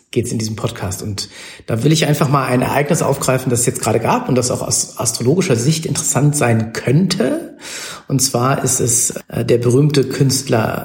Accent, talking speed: German, 195 wpm